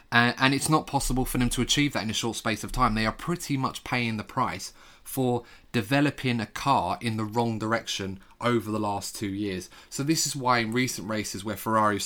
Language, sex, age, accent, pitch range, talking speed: English, male, 20-39, British, 105-120 Hz, 220 wpm